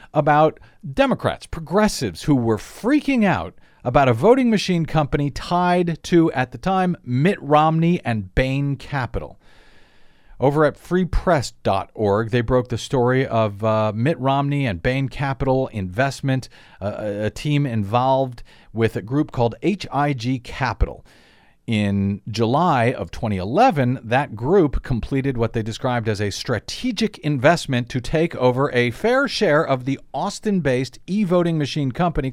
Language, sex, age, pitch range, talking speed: English, male, 50-69, 115-160 Hz, 140 wpm